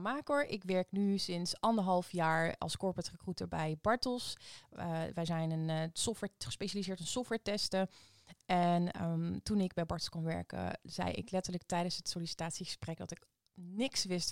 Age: 20-39